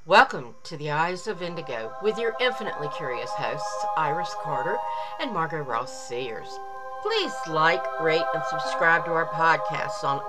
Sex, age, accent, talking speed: female, 50-69, American, 150 wpm